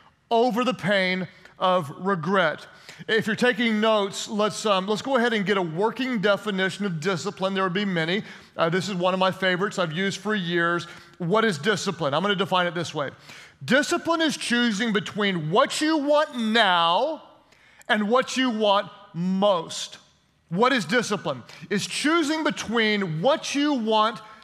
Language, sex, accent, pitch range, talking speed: English, male, American, 180-225 Hz, 165 wpm